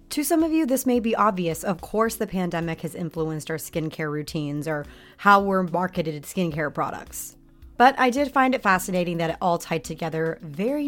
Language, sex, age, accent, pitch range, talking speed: English, female, 30-49, American, 170-205 Hz, 195 wpm